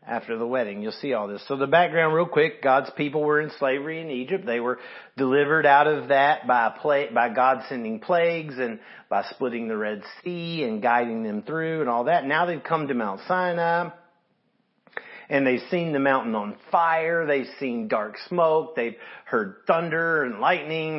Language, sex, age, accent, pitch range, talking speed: English, male, 40-59, American, 120-170 Hz, 185 wpm